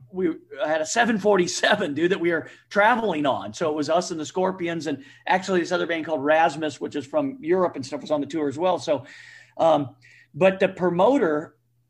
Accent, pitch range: American, 160-210 Hz